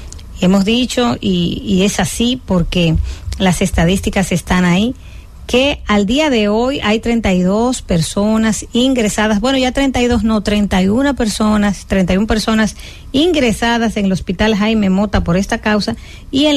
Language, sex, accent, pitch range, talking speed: English, female, American, 175-230 Hz, 140 wpm